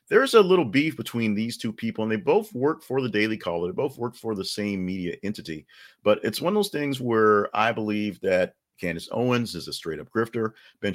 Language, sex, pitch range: English, male, 95-125 Hz